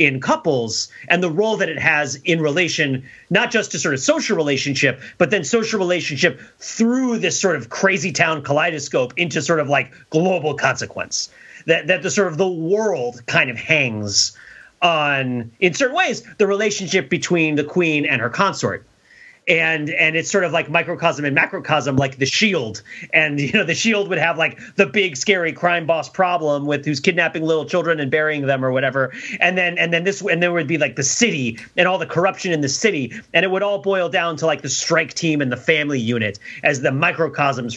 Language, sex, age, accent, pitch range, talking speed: English, male, 30-49, American, 130-180 Hz, 205 wpm